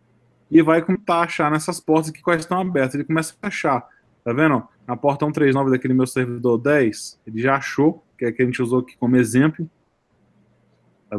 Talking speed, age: 190 wpm, 20-39